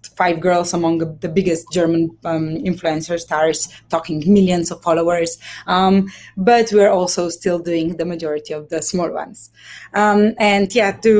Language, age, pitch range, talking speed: English, 20-39, 175-210 Hz, 155 wpm